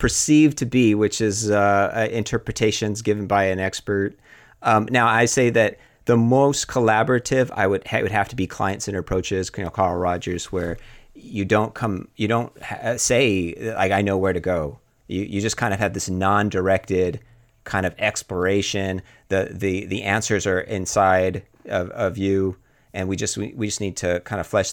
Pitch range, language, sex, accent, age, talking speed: 95-120 Hz, English, male, American, 30-49, 185 wpm